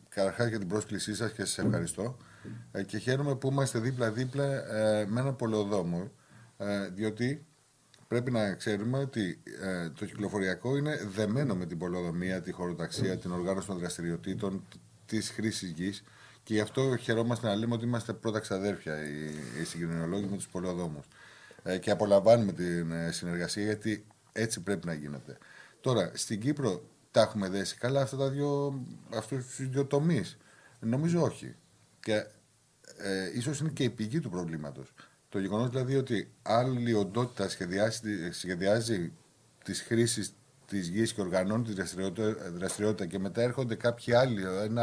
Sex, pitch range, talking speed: male, 95-120 Hz, 145 wpm